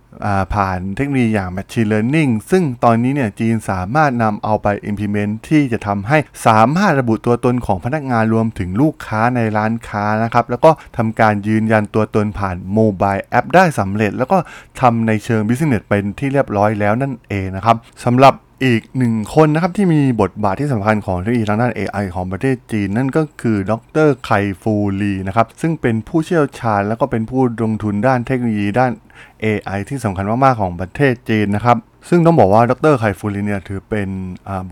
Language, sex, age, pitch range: Thai, male, 20-39, 105-125 Hz